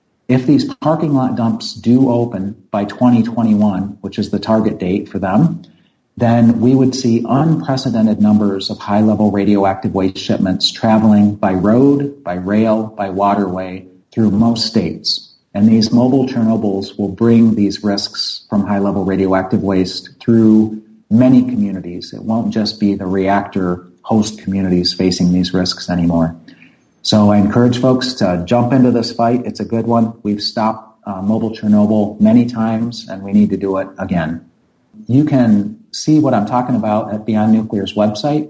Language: English